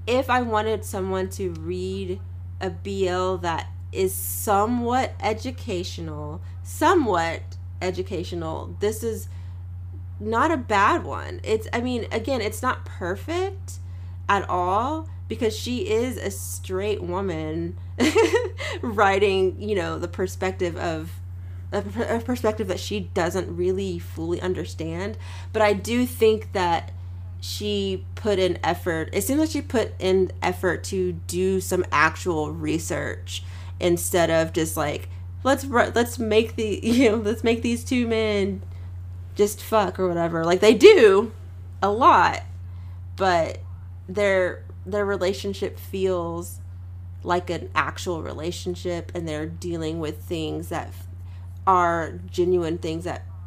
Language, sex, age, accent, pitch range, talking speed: English, female, 20-39, American, 90-100 Hz, 130 wpm